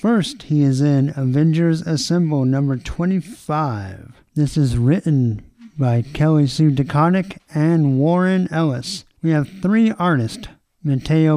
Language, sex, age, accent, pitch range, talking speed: English, male, 50-69, American, 130-175 Hz, 120 wpm